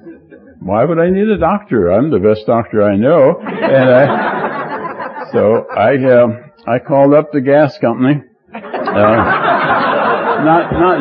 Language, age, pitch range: English, 60-79, 110-140 Hz